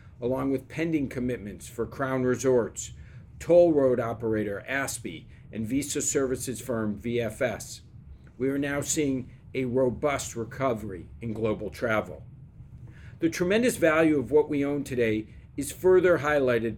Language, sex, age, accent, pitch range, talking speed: English, male, 50-69, American, 120-150 Hz, 130 wpm